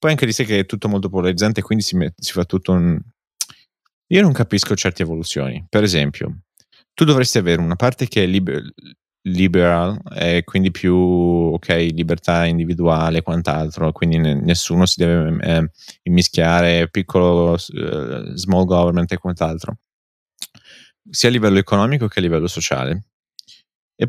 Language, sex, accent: Italian, male, native